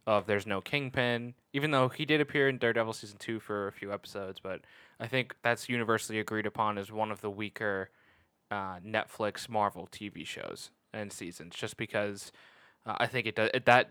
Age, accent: 10-29, American